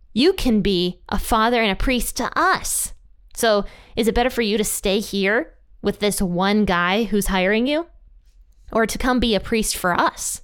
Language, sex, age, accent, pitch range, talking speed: English, female, 20-39, American, 180-250 Hz, 195 wpm